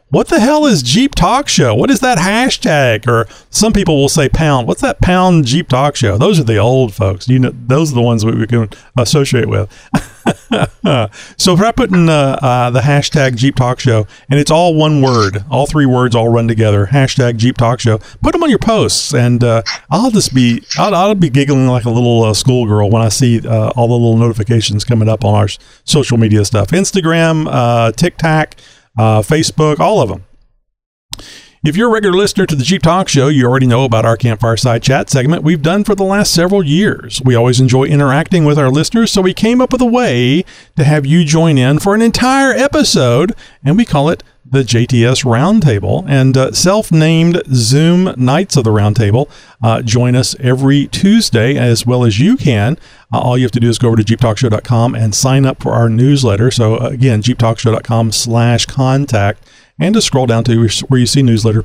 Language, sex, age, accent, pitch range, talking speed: English, male, 40-59, American, 115-155 Hz, 205 wpm